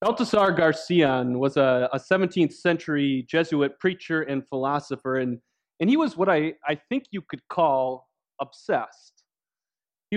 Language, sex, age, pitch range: English, male, 30-49, 135-170 Hz